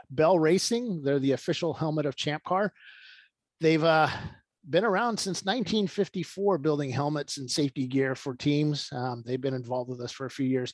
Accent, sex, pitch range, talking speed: American, male, 130-160 Hz, 180 wpm